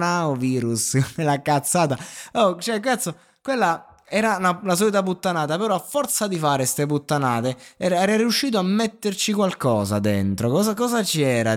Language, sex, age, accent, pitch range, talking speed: Italian, male, 20-39, native, 110-150 Hz, 160 wpm